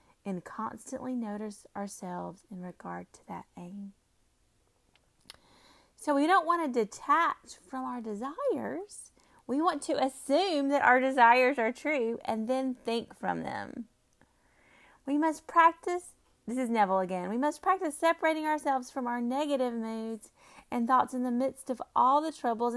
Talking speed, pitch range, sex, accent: 150 wpm, 210-285 Hz, female, American